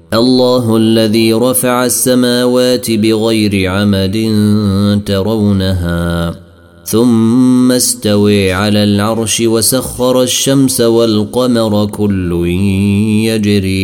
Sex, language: male, Arabic